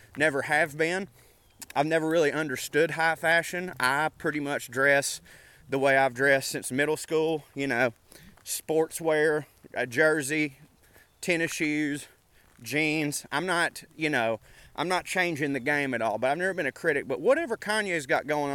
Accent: American